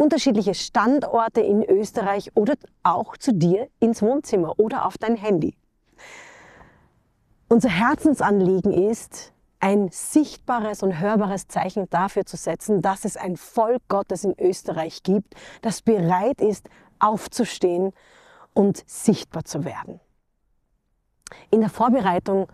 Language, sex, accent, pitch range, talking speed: English, female, German, 190-235 Hz, 115 wpm